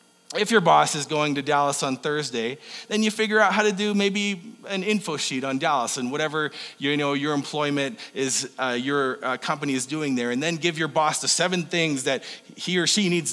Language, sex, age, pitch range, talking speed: English, male, 30-49, 150-215 Hz, 220 wpm